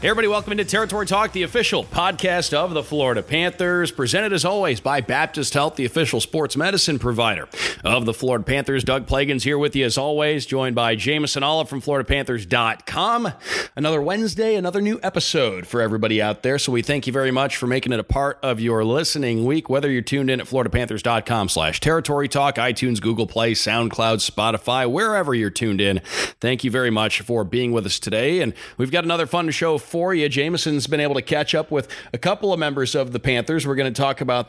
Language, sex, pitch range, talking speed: English, male, 120-155 Hz, 205 wpm